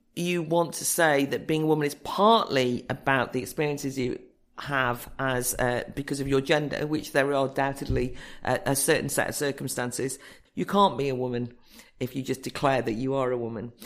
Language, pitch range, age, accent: English, 135-180 Hz, 50-69, British